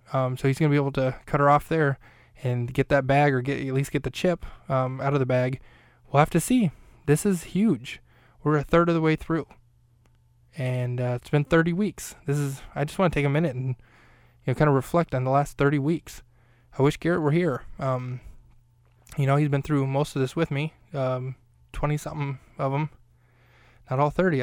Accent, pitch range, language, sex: American, 125-145 Hz, English, male